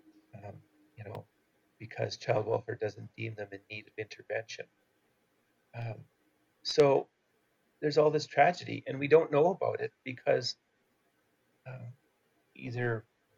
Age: 40-59